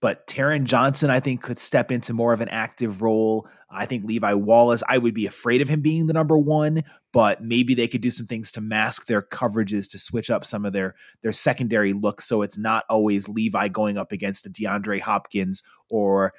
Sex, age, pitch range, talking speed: male, 30-49, 105-130 Hz, 215 wpm